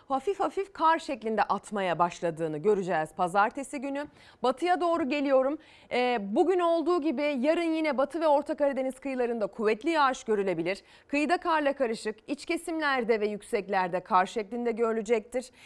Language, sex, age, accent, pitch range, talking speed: Turkish, female, 30-49, native, 220-315 Hz, 140 wpm